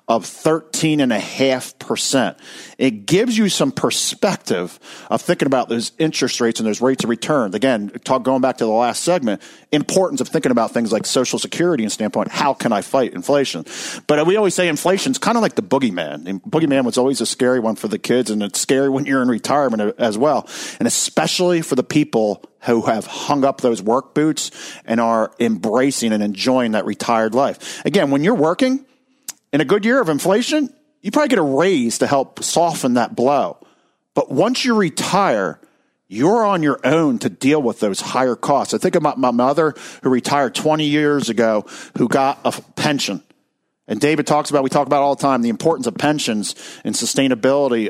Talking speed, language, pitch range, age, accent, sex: 195 wpm, English, 125-165 Hz, 50-69, American, male